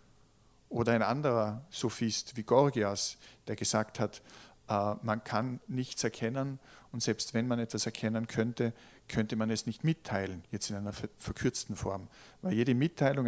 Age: 50-69